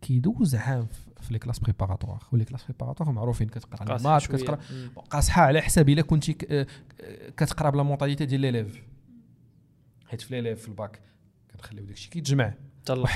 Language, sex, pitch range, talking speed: Arabic, male, 110-140 Hz, 130 wpm